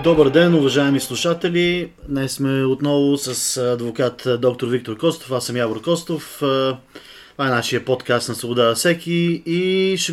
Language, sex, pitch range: Bulgarian, male, 130-165 Hz